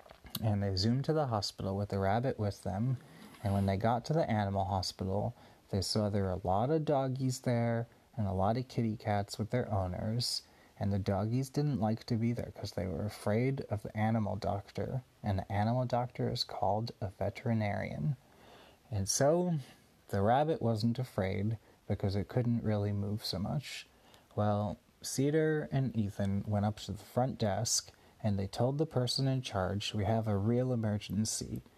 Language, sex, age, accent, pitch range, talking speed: English, male, 30-49, American, 105-125 Hz, 180 wpm